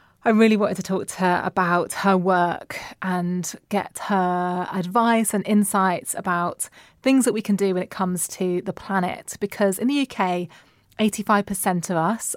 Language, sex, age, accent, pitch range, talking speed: English, female, 20-39, British, 180-210 Hz, 170 wpm